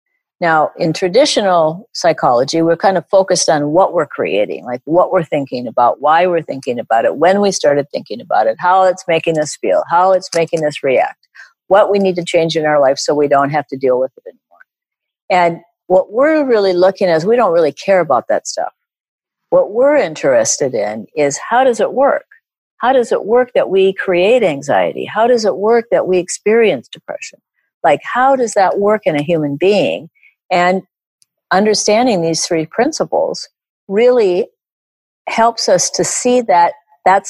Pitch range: 175-250 Hz